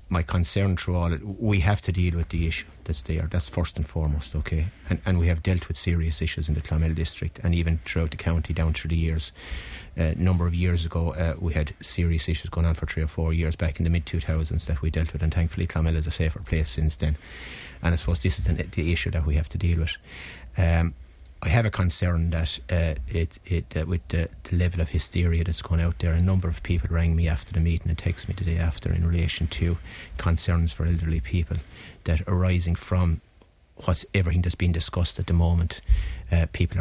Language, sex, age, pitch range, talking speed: English, male, 30-49, 80-90 Hz, 235 wpm